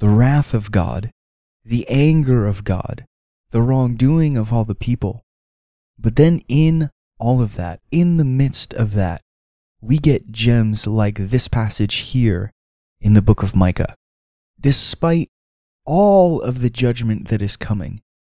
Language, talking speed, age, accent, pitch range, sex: English, 150 wpm, 20-39, American, 105-135 Hz, male